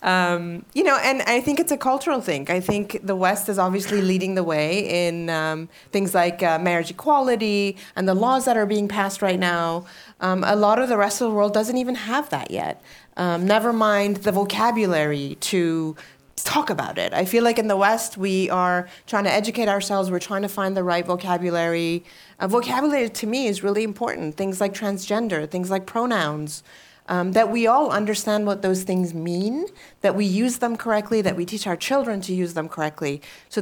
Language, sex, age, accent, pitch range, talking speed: English, female, 30-49, American, 175-215 Hz, 205 wpm